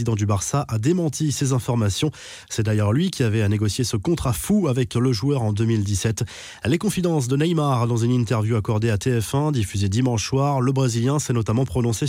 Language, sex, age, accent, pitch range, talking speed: French, male, 20-39, French, 110-135 Hz, 195 wpm